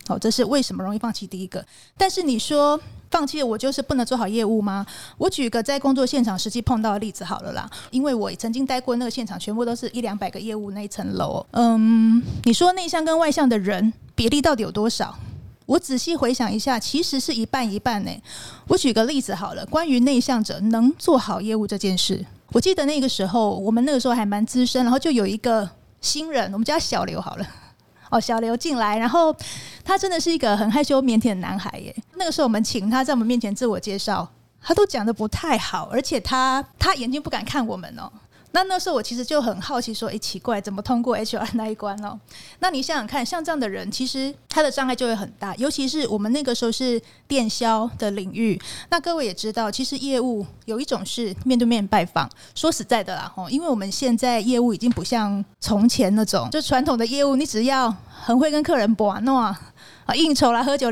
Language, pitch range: Chinese, 220-275 Hz